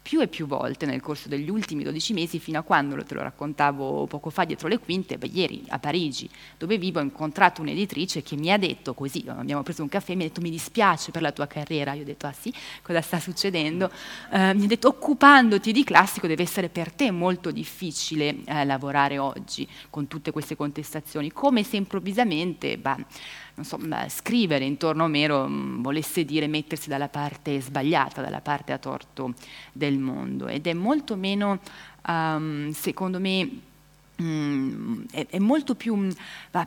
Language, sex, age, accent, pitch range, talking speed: Italian, female, 30-49, native, 145-185 Hz, 175 wpm